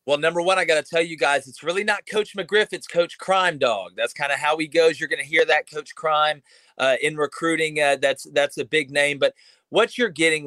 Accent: American